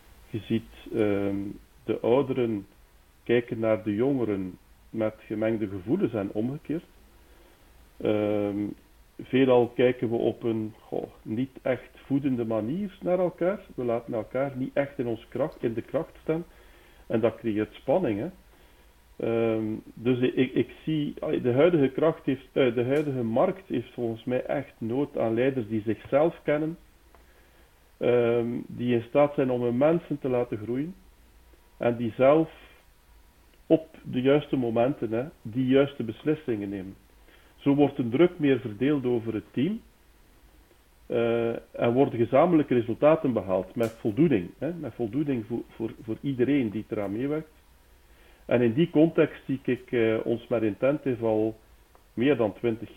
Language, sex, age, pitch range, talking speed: Dutch, male, 50-69, 110-135 Hz, 140 wpm